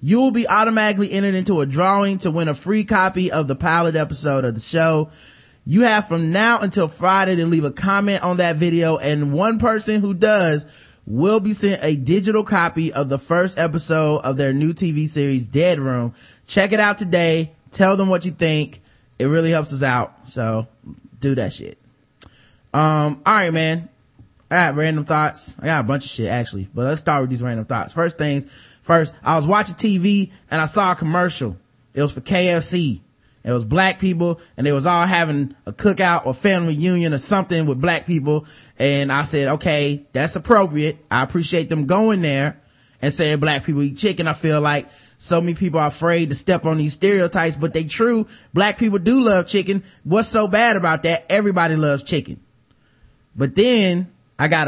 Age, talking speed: 20-39, 200 wpm